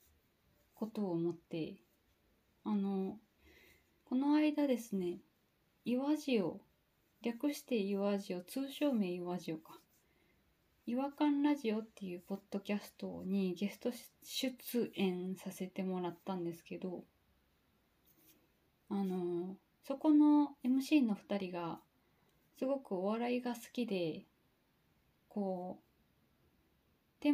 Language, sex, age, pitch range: Japanese, female, 20-39, 180-245 Hz